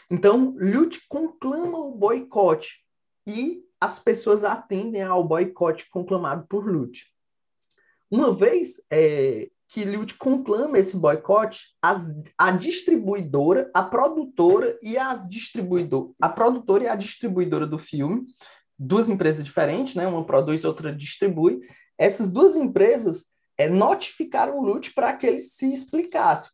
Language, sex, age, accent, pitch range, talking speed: Portuguese, male, 20-39, Brazilian, 180-275 Hz, 125 wpm